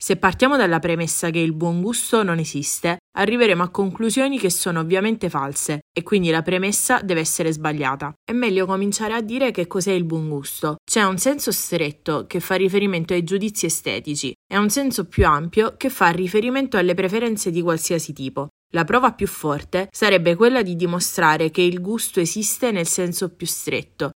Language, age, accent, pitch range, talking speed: Italian, 20-39, native, 165-205 Hz, 180 wpm